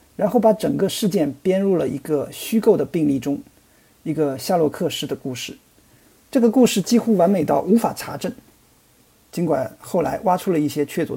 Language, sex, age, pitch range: Chinese, male, 50-69, 155-225 Hz